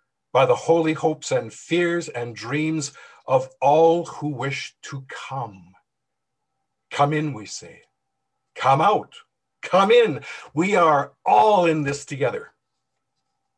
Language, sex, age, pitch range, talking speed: English, male, 50-69, 130-165 Hz, 125 wpm